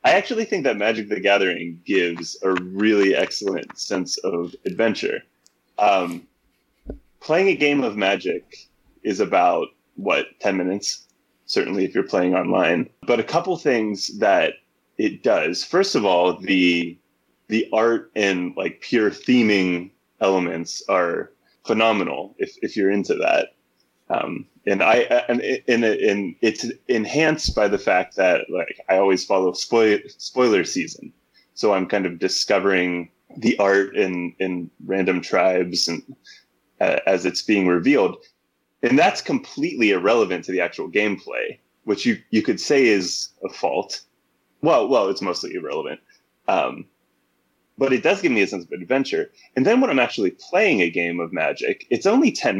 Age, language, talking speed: 20-39, English, 155 wpm